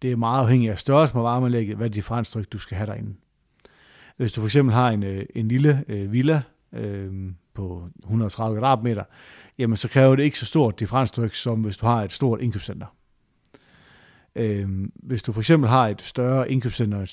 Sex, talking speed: male, 180 wpm